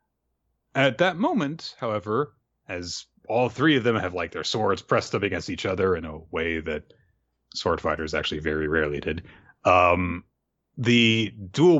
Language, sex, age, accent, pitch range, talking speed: English, male, 30-49, American, 90-120 Hz, 160 wpm